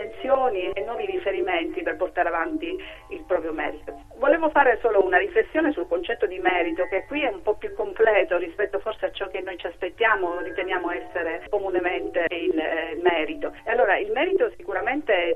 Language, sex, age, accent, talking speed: Italian, female, 40-59, native, 185 wpm